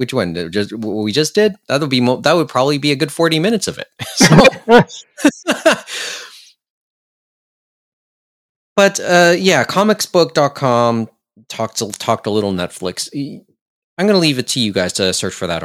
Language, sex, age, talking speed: English, male, 30-49, 155 wpm